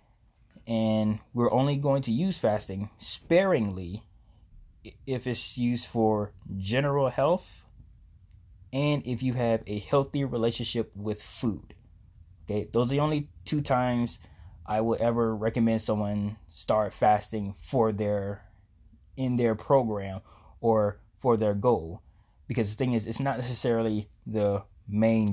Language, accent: English, American